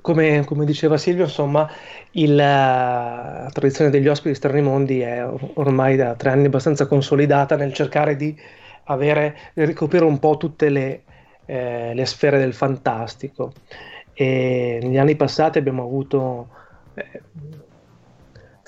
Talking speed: 135 wpm